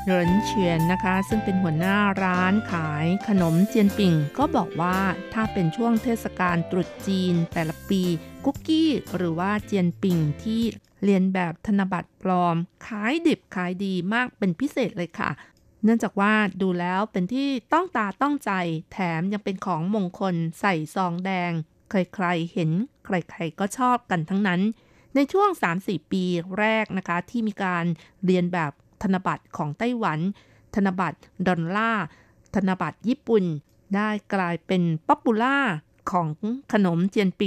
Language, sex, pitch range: Thai, female, 175-220 Hz